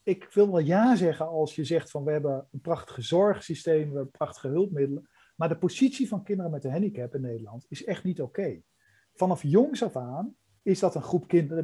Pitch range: 140-190 Hz